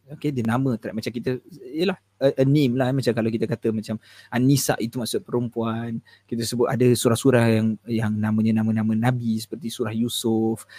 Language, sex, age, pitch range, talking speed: Malay, male, 20-39, 115-145 Hz, 180 wpm